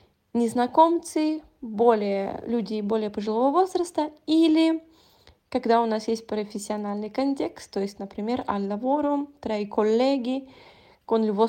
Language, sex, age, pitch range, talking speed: Italian, female, 20-39, 200-260 Hz, 105 wpm